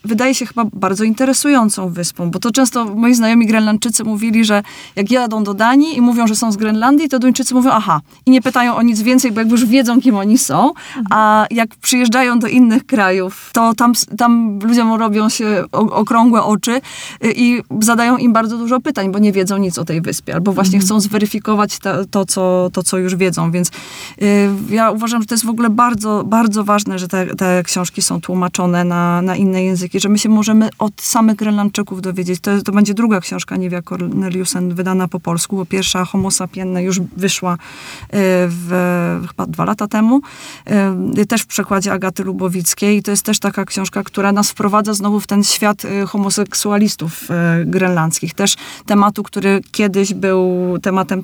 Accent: native